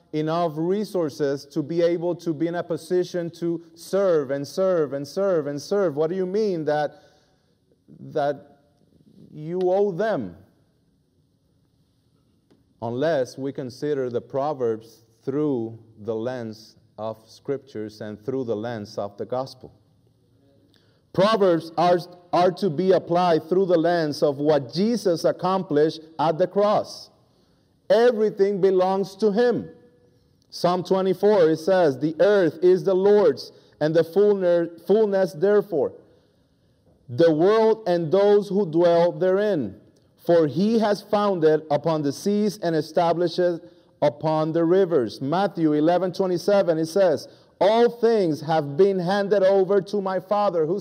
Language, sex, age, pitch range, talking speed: English, male, 30-49, 150-195 Hz, 130 wpm